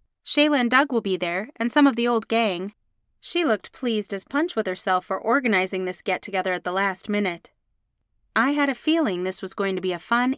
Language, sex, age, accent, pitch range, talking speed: English, female, 30-49, American, 180-225 Hz, 220 wpm